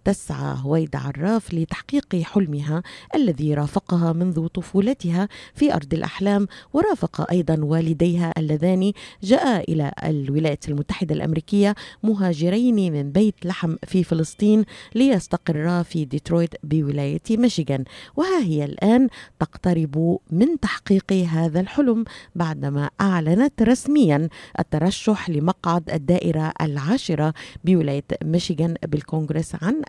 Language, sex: Arabic, female